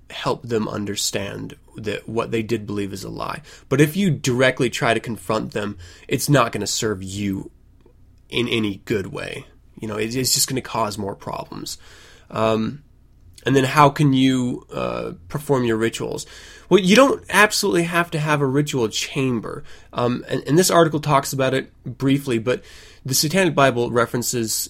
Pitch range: 105-135 Hz